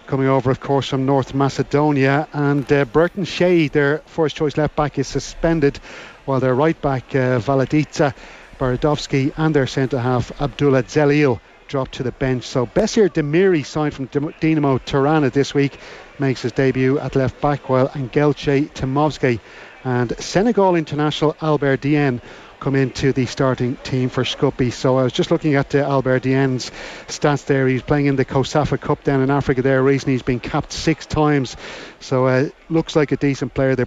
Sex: male